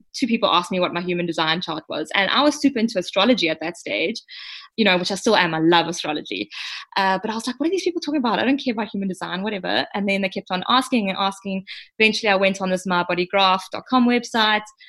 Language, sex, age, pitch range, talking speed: English, female, 20-39, 180-230 Hz, 245 wpm